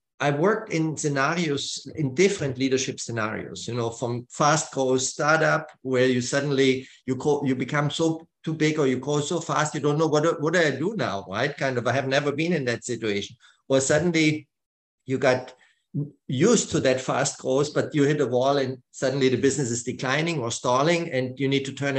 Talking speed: 205 wpm